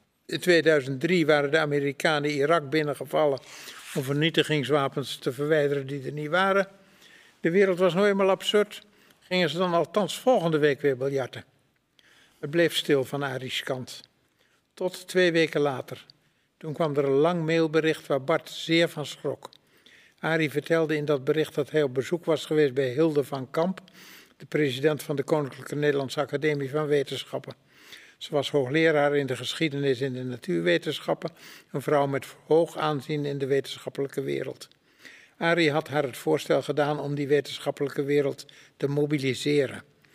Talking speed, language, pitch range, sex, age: 155 wpm, Dutch, 140-160 Hz, male, 60-79